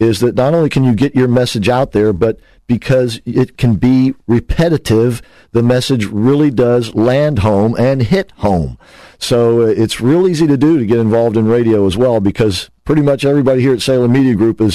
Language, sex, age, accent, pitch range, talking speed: English, male, 50-69, American, 105-125 Hz, 200 wpm